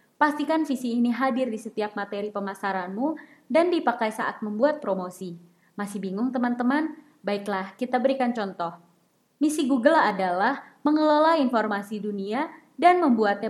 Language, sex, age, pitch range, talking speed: Indonesian, female, 20-39, 200-270 Hz, 125 wpm